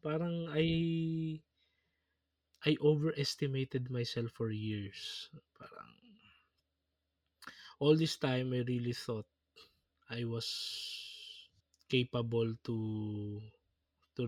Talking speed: 80 wpm